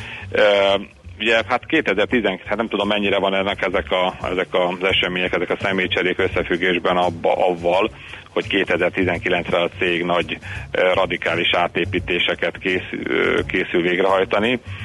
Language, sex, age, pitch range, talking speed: Hungarian, male, 40-59, 85-95 Hz, 135 wpm